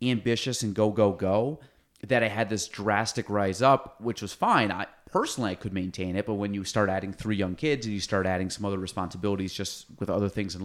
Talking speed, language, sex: 230 wpm, English, male